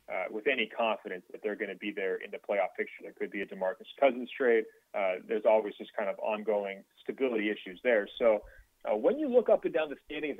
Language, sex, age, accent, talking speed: English, male, 30-49, American, 235 wpm